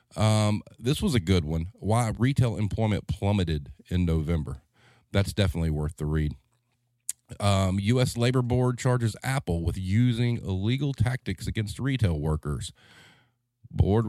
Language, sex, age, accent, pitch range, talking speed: English, male, 40-59, American, 90-120 Hz, 130 wpm